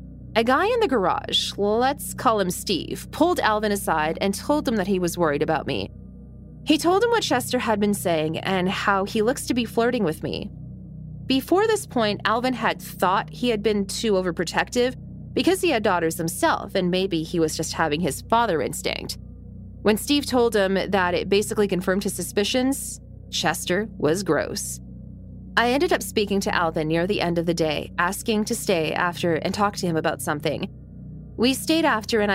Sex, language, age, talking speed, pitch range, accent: female, English, 20-39, 190 wpm, 170-220 Hz, American